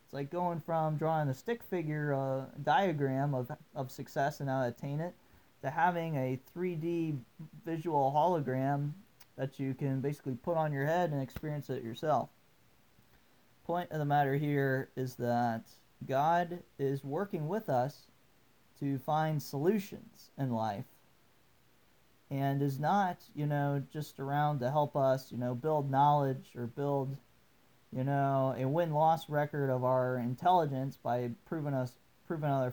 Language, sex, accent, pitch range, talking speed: English, male, American, 130-170 Hz, 150 wpm